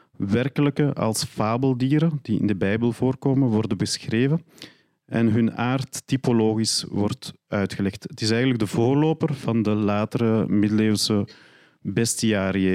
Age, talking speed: 40-59, 120 wpm